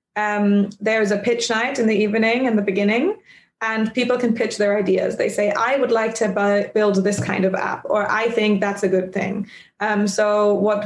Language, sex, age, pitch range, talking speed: English, female, 20-39, 200-225 Hz, 210 wpm